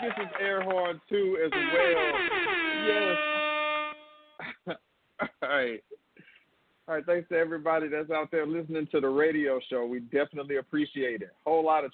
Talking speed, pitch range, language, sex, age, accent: 135 wpm, 130-175 Hz, English, male, 40-59, American